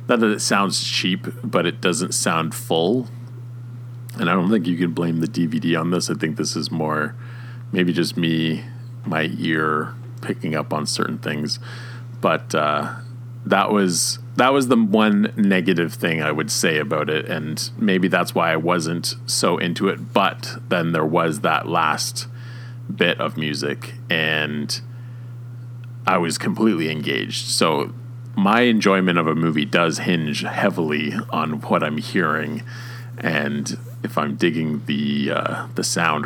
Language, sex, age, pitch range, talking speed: English, male, 40-59, 85-120 Hz, 155 wpm